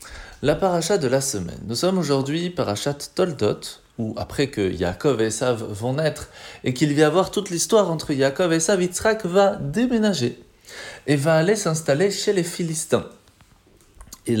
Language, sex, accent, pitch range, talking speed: French, male, French, 120-165 Hz, 165 wpm